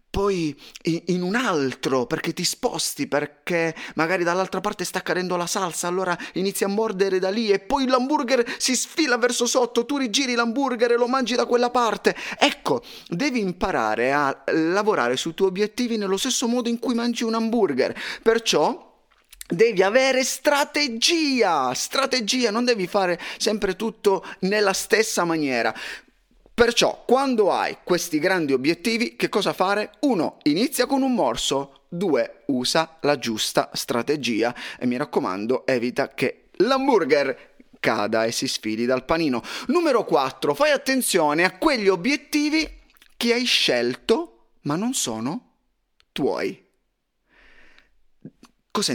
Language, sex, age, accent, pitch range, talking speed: Italian, male, 30-49, native, 160-245 Hz, 135 wpm